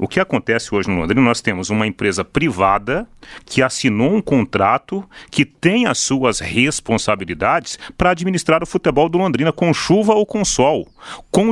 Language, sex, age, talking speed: Portuguese, male, 40-59, 165 wpm